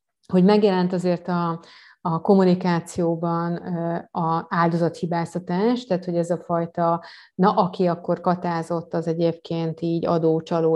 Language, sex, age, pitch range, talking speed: Hungarian, female, 30-49, 165-180 Hz, 115 wpm